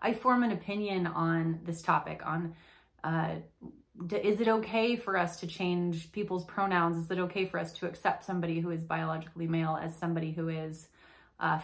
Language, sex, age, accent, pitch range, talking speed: English, female, 30-49, American, 165-195 Hz, 185 wpm